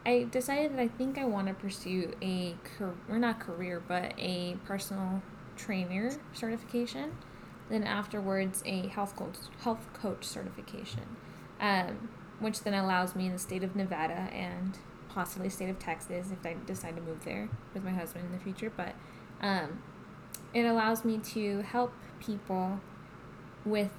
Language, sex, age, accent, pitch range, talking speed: English, female, 10-29, American, 185-215 Hz, 160 wpm